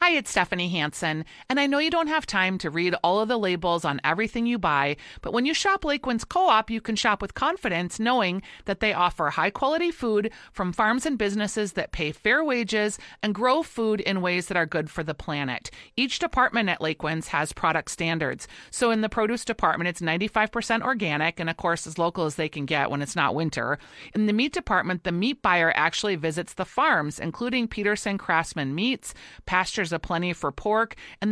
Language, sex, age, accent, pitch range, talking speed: English, female, 40-59, American, 165-230 Hz, 205 wpm